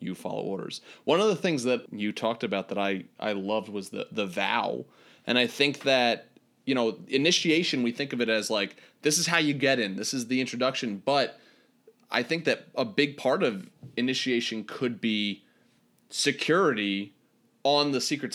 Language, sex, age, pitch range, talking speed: English, male, 30-49, 110-145 Hz, 185 wpm